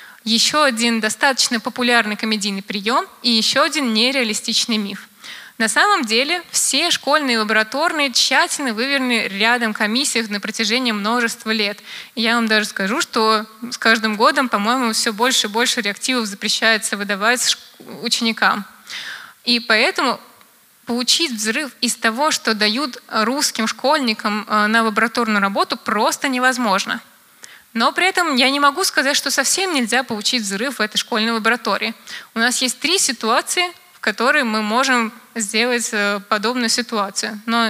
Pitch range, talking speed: 220-265 Hz, 135 wpm